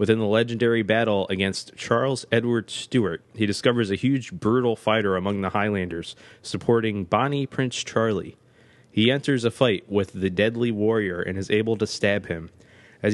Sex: male